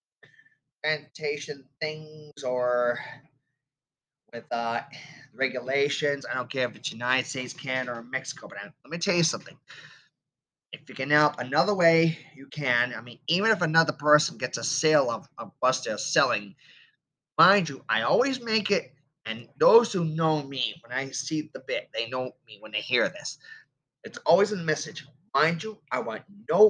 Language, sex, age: English, male, 30-49